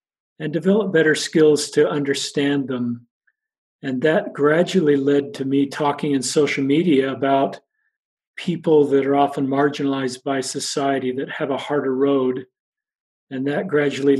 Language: English